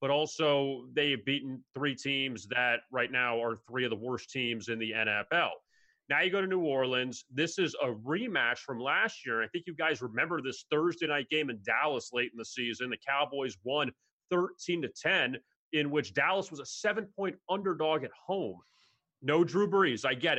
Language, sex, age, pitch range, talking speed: English, male, 30-49, 130-160 Hz, 200 wpm